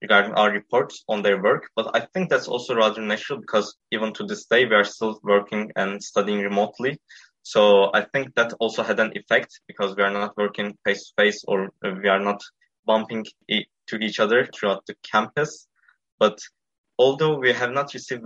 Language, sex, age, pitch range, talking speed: Turkish, male, 20-39, 105-125 Hz, 185 wpm